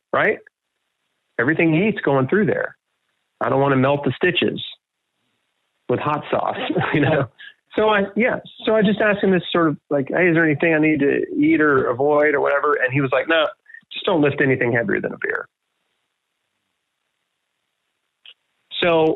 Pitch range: 115-155 Hz